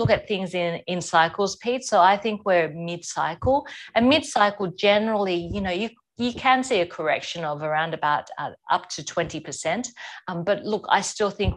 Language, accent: English, Australian